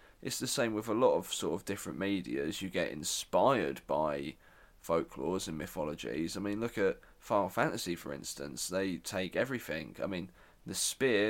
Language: English